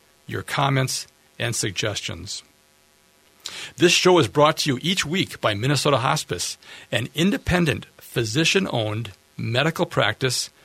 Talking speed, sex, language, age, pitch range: 115 wpm, male, English, 50-69, 110-145 Hz